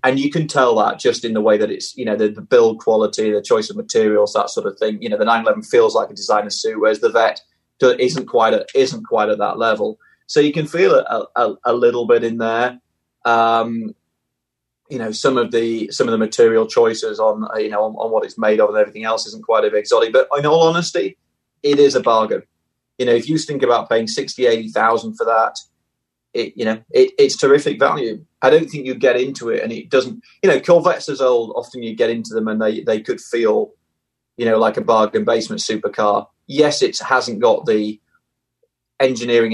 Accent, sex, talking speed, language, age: British, male, 225 wpm, English, 30-49